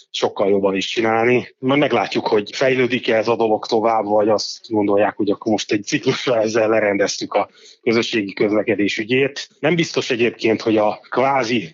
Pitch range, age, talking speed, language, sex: 105-120 Hz, 30-49, 165 wpm, Hungarian, male